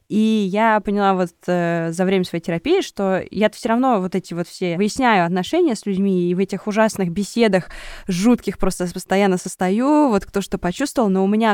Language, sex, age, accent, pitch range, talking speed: Russian, female, 20-39, native, 175-215 Hz, 190 wpm